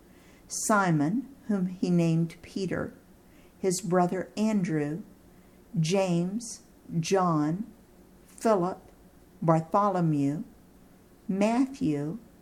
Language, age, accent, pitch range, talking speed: English, 50-69, American, 165-215 Hz, 65 wpm